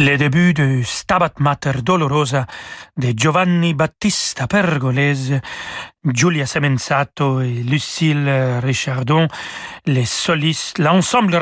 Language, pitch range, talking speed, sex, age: French, 135-175 Hz, 95 wpm, male, 40-59